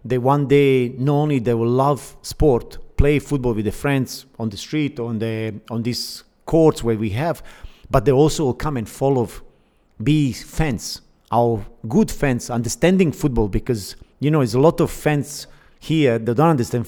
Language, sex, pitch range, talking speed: English, male, 115-145 Hz, 180 wpm